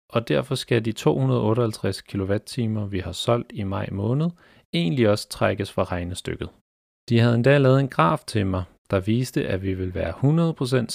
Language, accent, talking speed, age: Danish, native, 175 wpm, 40-59